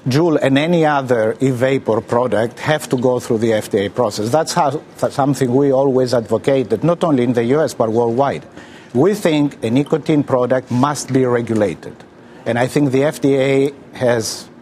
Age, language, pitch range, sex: 50-69, English, 120-140 Hz, male